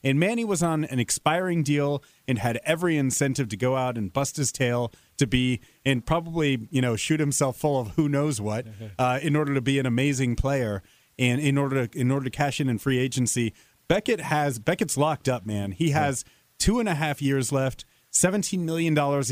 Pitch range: 125-155 Hz